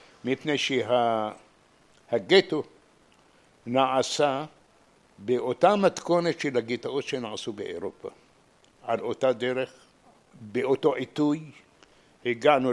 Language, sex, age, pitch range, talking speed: Hebrew, male, 60-79, 115-150 Hz, 75 wpm